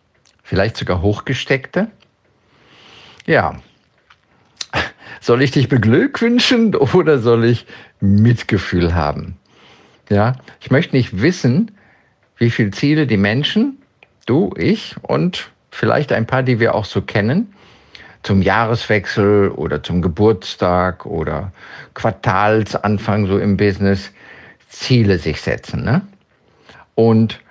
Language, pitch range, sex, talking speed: German, 95-125 Hz, male, 105 wpm